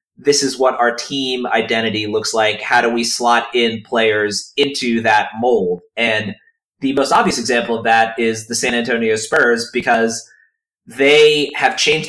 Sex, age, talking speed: male, 30-49, 165 wpm